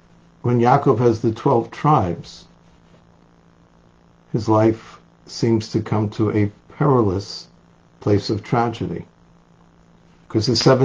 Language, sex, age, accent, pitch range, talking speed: English, male, 60-79, American, 105-135 Hz, 105 wpm